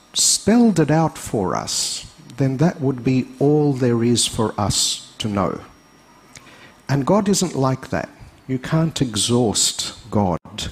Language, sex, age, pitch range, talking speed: English, male, 50-69, 105-135 Hz, 140 wpm